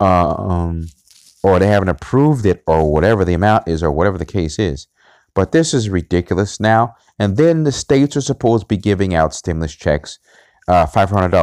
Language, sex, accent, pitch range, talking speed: English, male, American, 90-125 Hz, 185 wpm